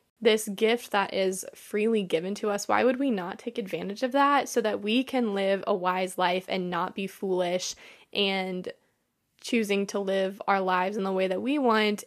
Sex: female